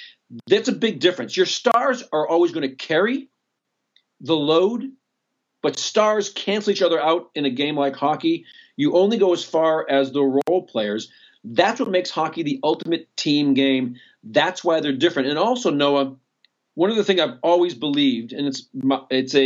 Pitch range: 135-180 Hz